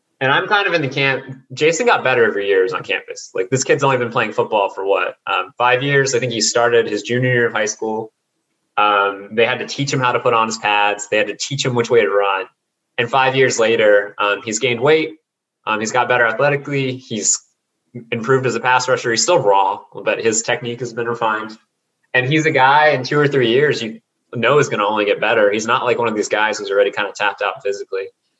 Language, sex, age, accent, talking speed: English, male, 20-39, American, 245 wpm